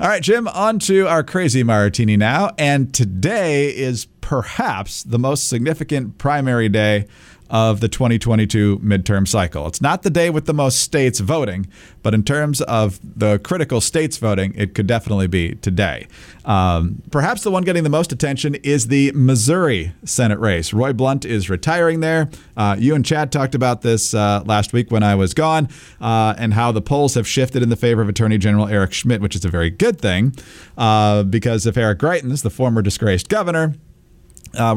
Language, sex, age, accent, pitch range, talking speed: English, male, 40-59, American, 105-150 Hz, 185 wpm